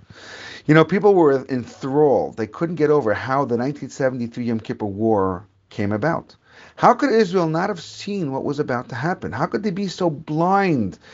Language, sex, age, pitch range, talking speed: English, male, 40-59, 115-155 Hz, 185 wpm